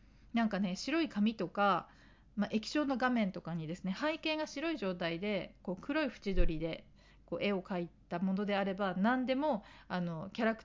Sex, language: female, Japanese